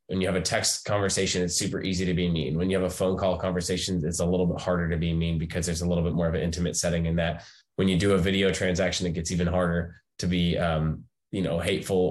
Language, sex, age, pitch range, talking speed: English, male, 20-39, 85-95 Hz, 275 wpm